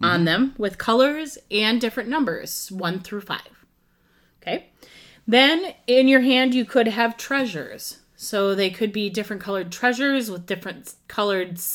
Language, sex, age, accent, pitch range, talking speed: English, female, 30-49, American, 175-260 Hz, 150 wpm